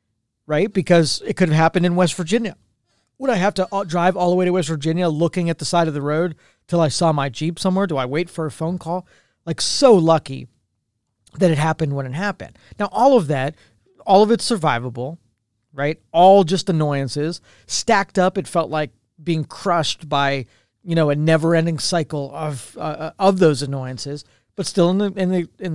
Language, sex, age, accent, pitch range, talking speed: English, male, 40-59, American, 135-180 Hz, 205 wpm